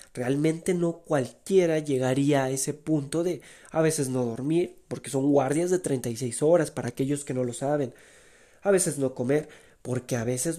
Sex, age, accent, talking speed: male, 30-49, Mexican, 175 wpm